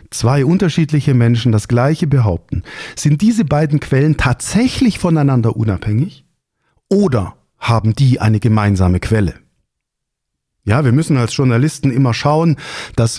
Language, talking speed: German, 125 wpm